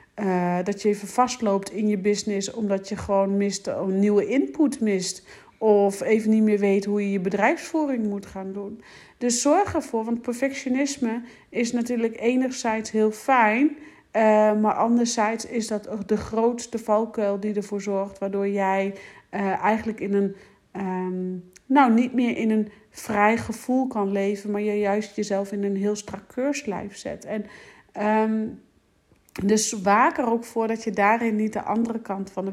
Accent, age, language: Dutch, 40-59, Dutch